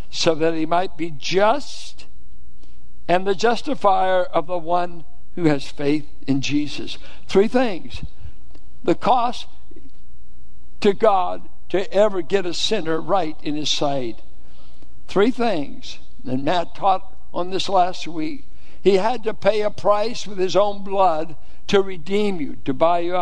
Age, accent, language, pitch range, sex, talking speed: 60-79, American, English, 165-205 Hz, male, 145 wpm